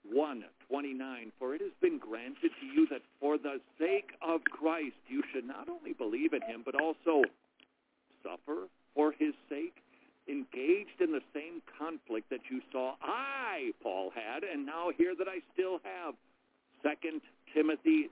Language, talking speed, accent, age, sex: English, 160 wpm, American, 50-69, male